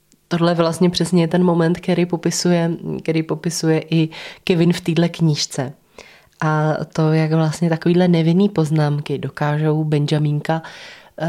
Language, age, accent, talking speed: Czech, 20-39, native, 130 wpm